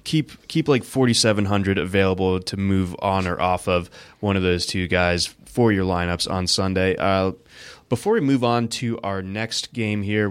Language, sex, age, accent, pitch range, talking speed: English, male, 20-39, American, 105-140 Hz, 180 wpm